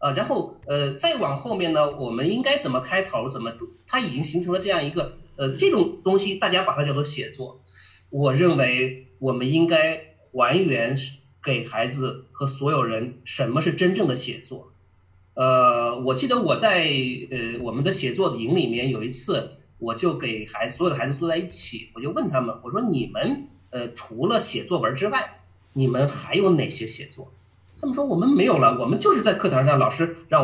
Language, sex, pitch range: Chinese, male, 125-180 Hz